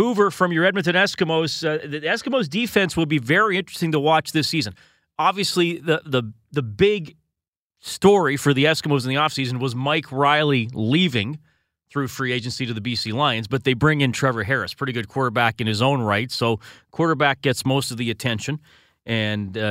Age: 30-49